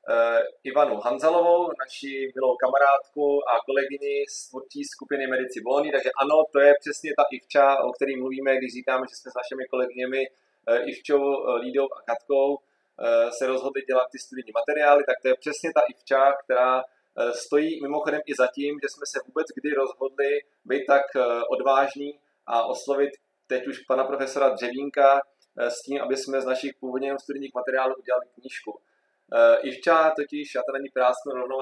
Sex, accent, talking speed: male, native, 160 wpm